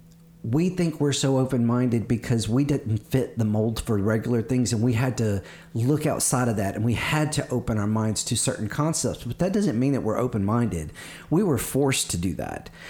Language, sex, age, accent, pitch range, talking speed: English, male, 40-59, American, 115-145 Hz, 210 wpm